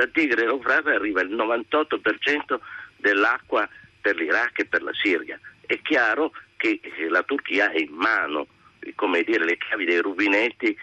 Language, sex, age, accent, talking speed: Italian, male, 50-69, native, 150 wpm